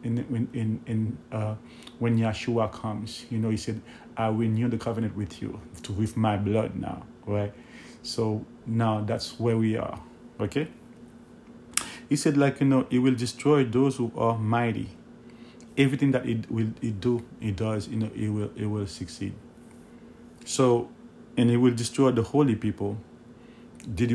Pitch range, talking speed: 110-130 Hz, 165 wpm